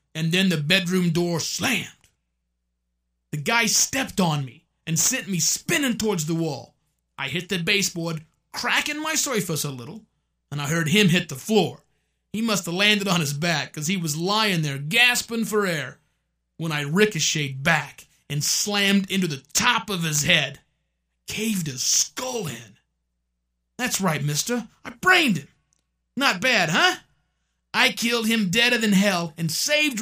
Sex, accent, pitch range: male, American, 145-220 Hz